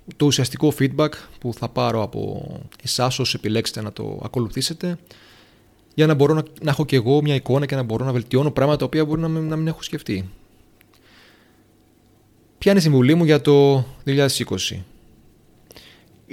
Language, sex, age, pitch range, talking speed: Greek, male, 30-49, 110-150 Hz, 160 wpm